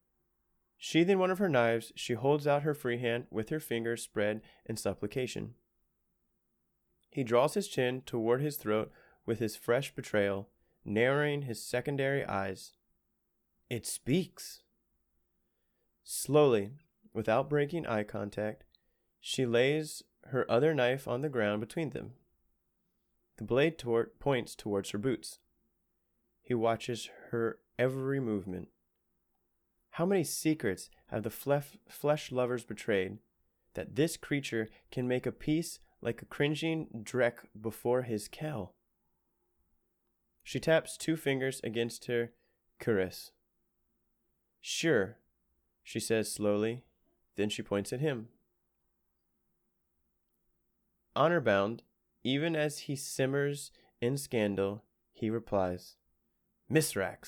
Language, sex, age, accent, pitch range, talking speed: English, male, 20-39, American, 105-140 Hz, 115 wpm